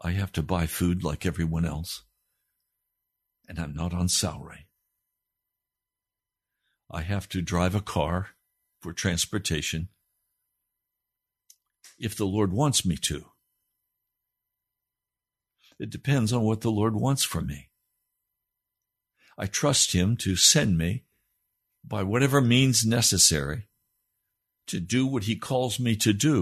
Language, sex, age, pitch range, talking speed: English, male, 60-79, 100-150 Hz, 125 wpm